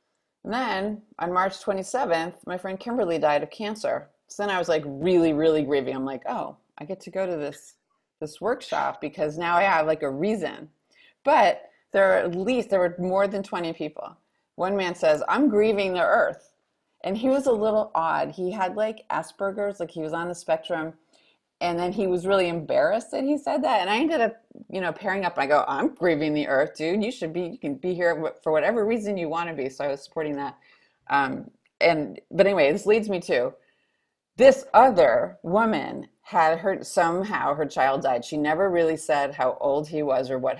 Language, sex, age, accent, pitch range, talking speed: English, female, 30-49, American, 160-210 Hz, 210 wpm